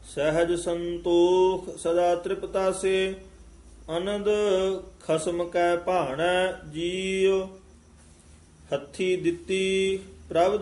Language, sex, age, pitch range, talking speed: Punjabi, male, 40-59, 170-190 Hz, 75 wpm